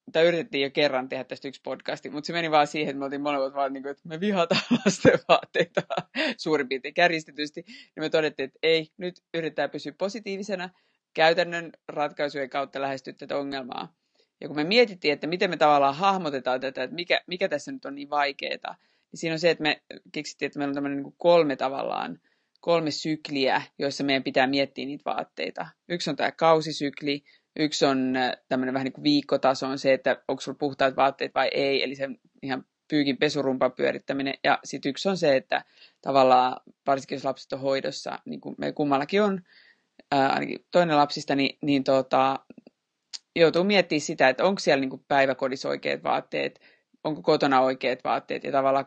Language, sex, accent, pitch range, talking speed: Finnish, female, native, 135-165 Hz, 175 wpm